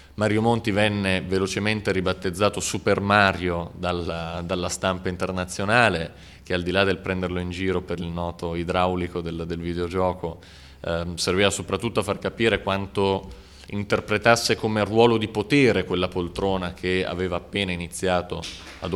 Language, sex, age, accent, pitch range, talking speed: Italian, male, 30-49, native, 85-100 Hz, 140 wpm